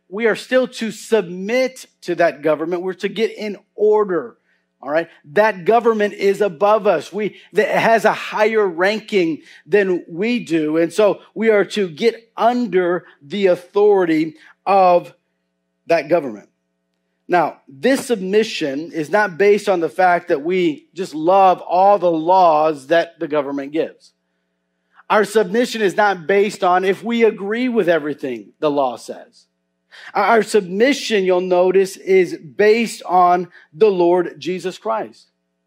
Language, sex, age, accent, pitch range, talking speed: English, male, 40-59, American, 160-215 Hz, 145 wpm